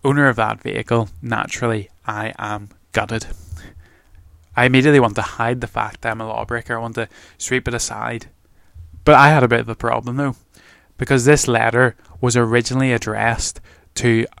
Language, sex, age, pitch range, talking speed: English, male, 20-39, 100-120 Hz, 170 wpm